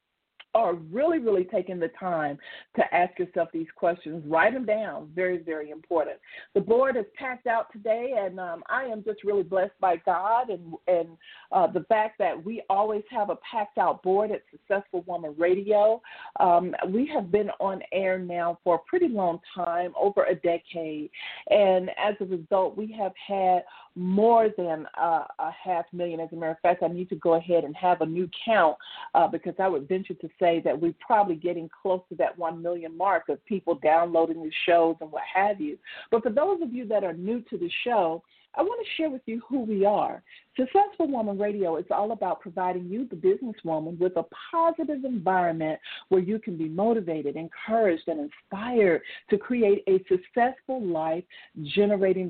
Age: 40-59